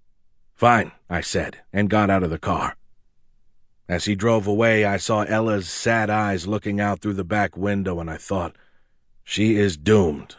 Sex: male